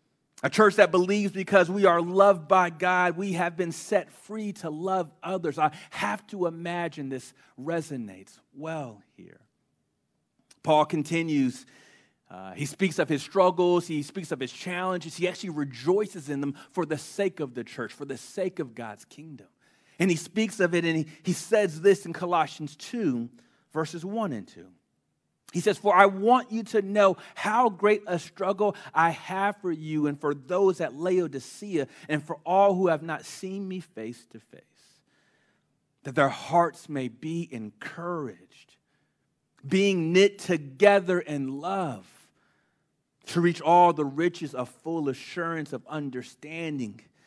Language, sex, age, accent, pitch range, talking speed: English, male, 40-59, American, 145-190 Hz, 160 wpm